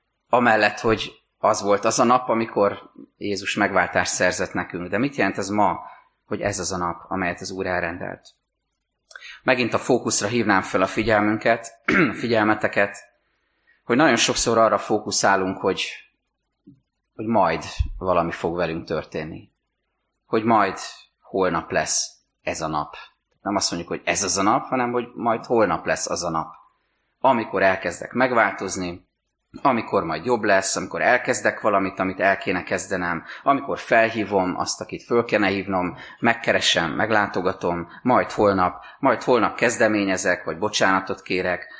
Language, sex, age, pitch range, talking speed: Hungarian, male, 30-49, 95-115 Hz, 145 wpm